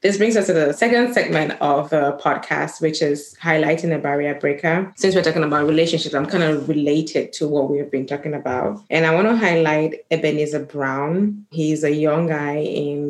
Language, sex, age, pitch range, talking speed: English, female, 20-39, 140-160 Hz, 195 wpm